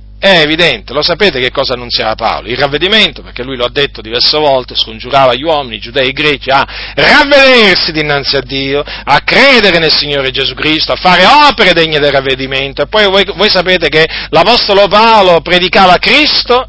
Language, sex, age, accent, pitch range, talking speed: Italian, male, 40-59, native, 130-200 Hz, 185 wpm